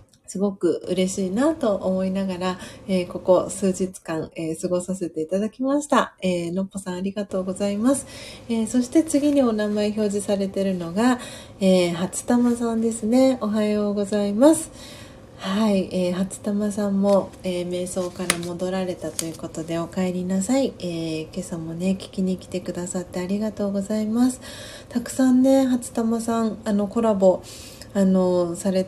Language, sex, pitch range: Japanese, female, 180-220 Hz